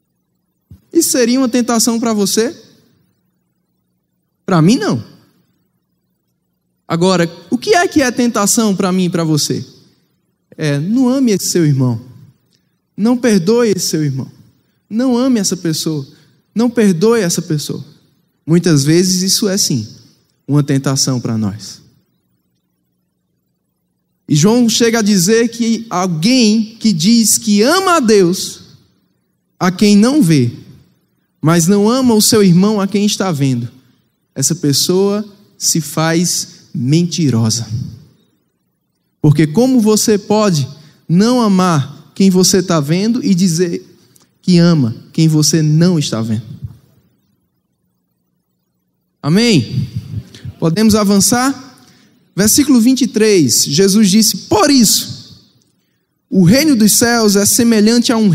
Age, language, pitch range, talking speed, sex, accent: 10-29, English, 150-220 Hz, 120 wpm, male, Brazilian